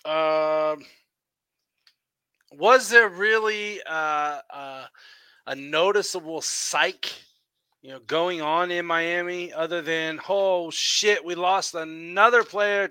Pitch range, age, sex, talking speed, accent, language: 160-215 Hz, 30-49, male, 105 wpm, American, English